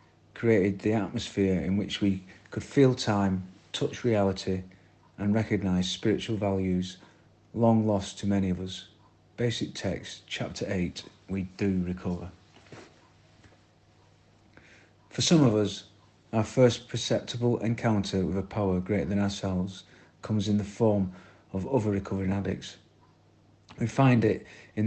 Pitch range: 95-110 Hz